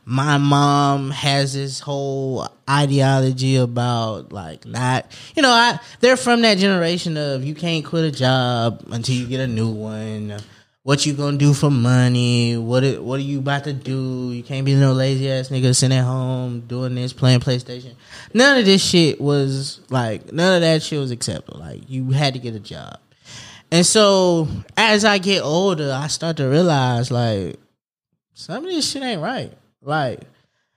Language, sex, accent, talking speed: English, male, American, 180 wpm